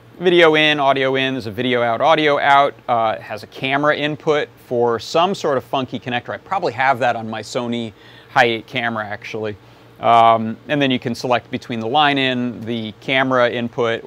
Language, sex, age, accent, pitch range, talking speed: English, male, 30-49, American, 120-145 Hz, 190 wpm